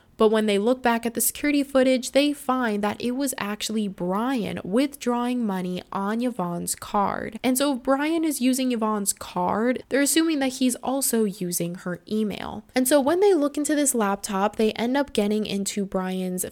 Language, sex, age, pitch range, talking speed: English, female, 10-29, 195-255 Hz, 185 wpm